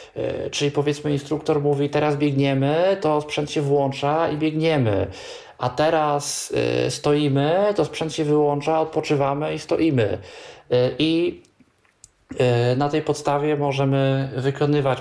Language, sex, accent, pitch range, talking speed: Polish, male, native, 125-150 Hz, 110 wpm